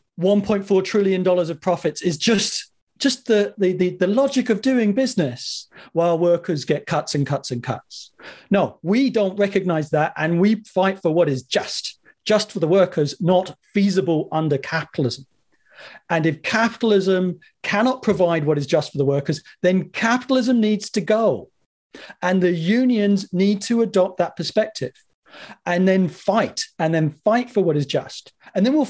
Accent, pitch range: British, 155-205 Hz